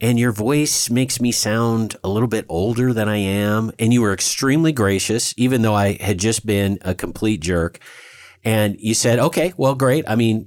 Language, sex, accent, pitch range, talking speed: English, male, American, 95-125 Hz, 200 wpm